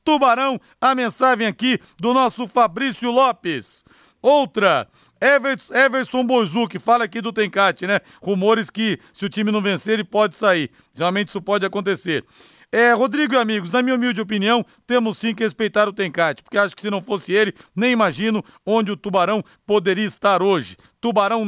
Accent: Brazilian